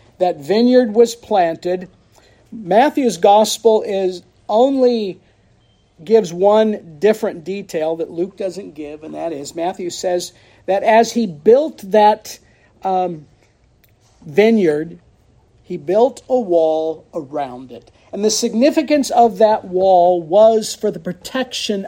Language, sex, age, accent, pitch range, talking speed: English, male, 50-69, American, 165-230 Hz, 120 wpm